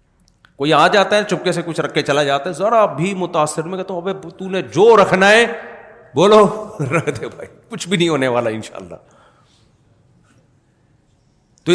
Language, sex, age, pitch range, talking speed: Urdu, male, 40-59, 140-185 Hz, 160 wpm